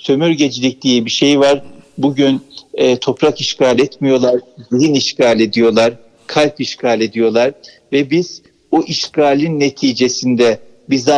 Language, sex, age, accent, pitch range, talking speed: Turkish, male, 50-69, native, 125-150 Hz, 120 wpm